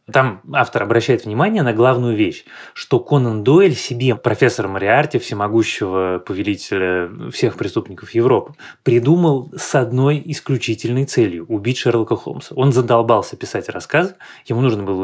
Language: Russian